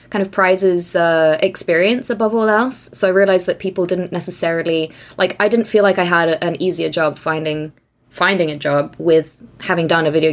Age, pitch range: 20-39, 160-195 Hz